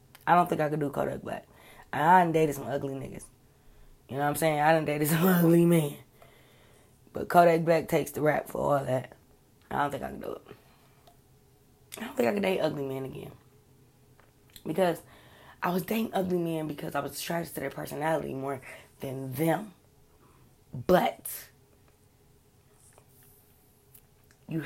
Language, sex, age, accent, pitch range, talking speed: English, female, 20-39, American, 135-165 Hz, 165 wpm